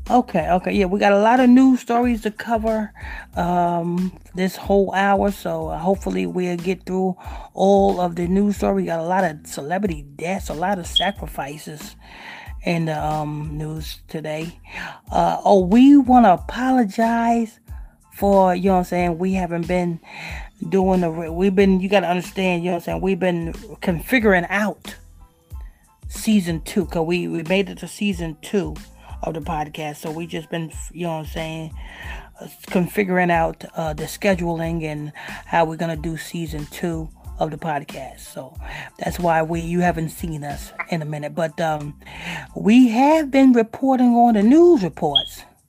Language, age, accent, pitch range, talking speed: English, 30-49, American, 160-205 Hz, 175 wpm